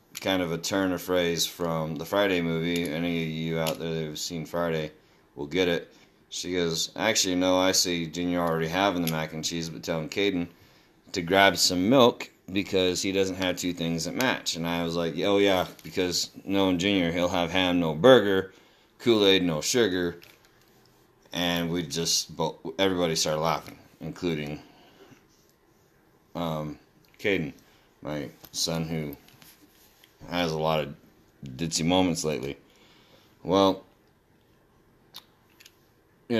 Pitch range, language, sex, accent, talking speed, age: 85-100 Hz, English, male, American, 145 wpm, 30-49